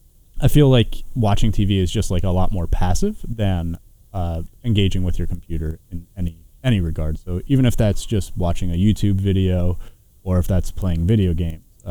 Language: English